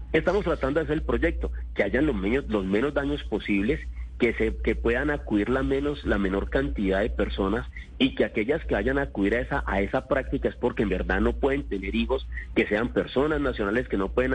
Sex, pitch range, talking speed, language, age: male, 95-145 Hz, 220 wpm, Spanish, 40-59